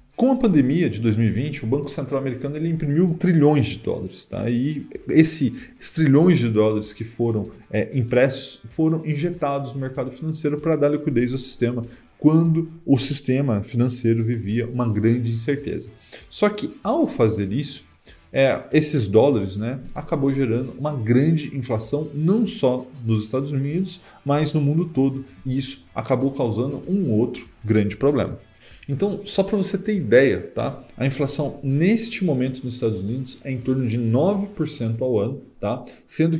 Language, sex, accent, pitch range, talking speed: Portuguese, male, Brazilian, 115-150 Hz, 160 wpm